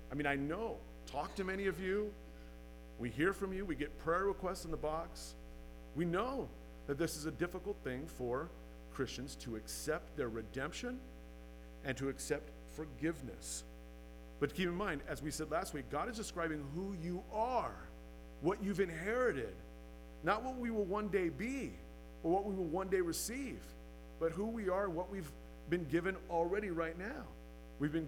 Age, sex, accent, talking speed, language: 50-69, male, American, 175 wpm, English